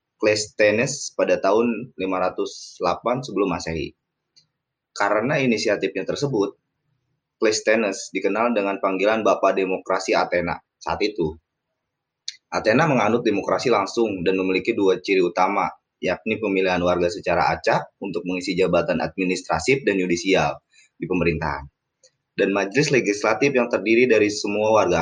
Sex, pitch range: male, 90-110 Hz